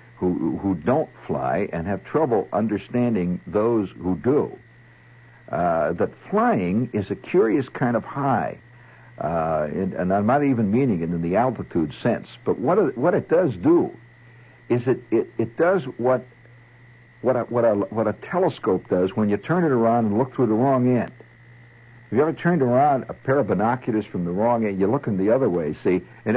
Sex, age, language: male, 60-79, English